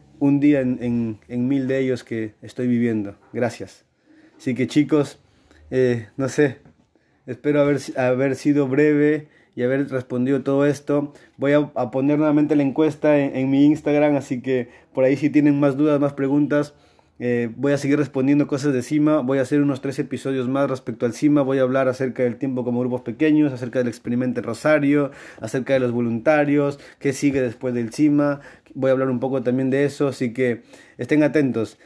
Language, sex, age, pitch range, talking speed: Spanish, male, 20-39, 130-150 Hz, 190 wpm